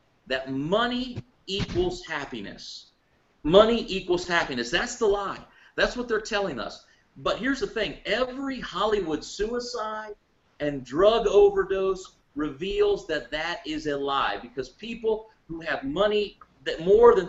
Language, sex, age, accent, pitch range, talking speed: English, male, 40-59, American, 150-240 Hz, 135 wpm